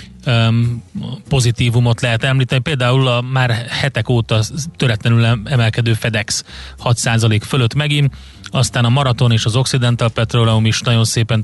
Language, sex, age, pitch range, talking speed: Hungarian, male, 30-49, 110-125 Hz, 130 wpm